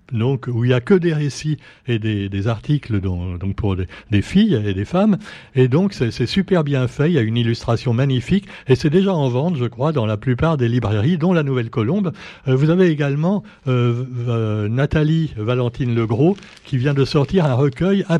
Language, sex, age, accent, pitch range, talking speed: French, male, 60-79, French, 115-155 Hz, 220 wpm